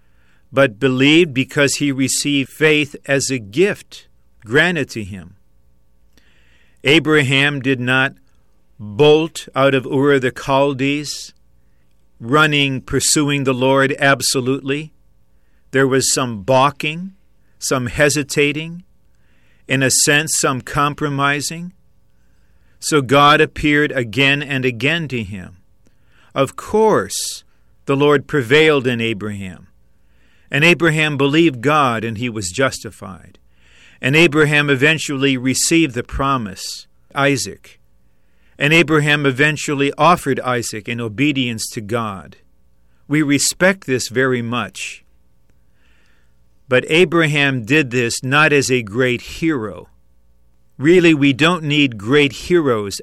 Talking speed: 110 wpm